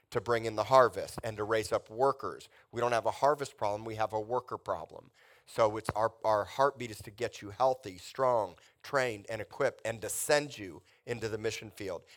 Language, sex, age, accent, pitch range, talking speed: English, male, 40-59, American, 105-120 Hz, 210 wpm